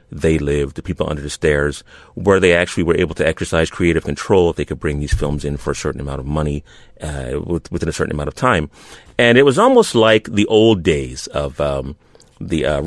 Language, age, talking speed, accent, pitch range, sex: English, 30-49, 225 wpm, American, 80-110 Hz, male